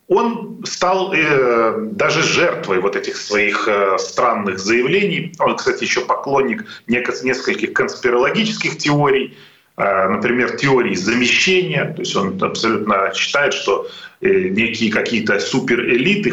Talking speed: 120 wpm